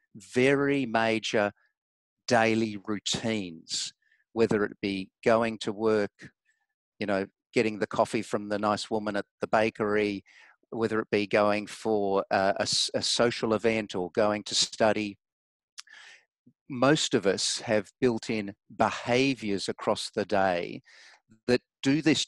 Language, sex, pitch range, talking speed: English, male, 105-120 Hz, 130 wpm